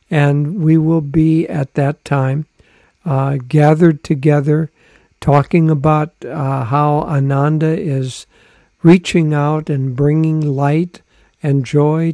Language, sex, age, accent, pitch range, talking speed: English, male, 60-79, American, 140-160 Hz, 115 wpm